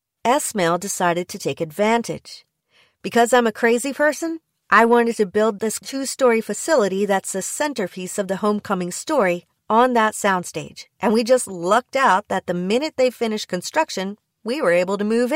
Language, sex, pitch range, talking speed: English, female, 190-240 Hz, 170 wpm